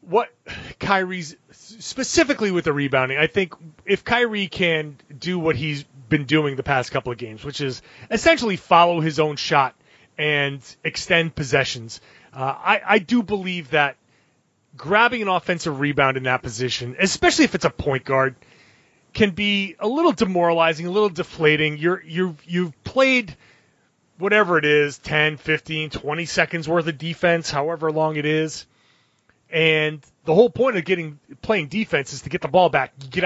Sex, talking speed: male, 160 wpm